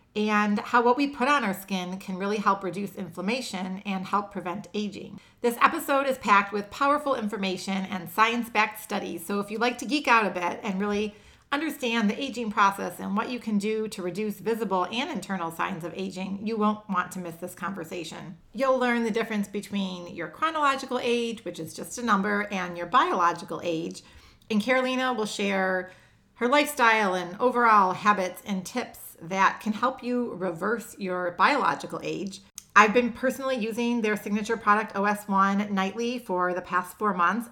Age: 40-59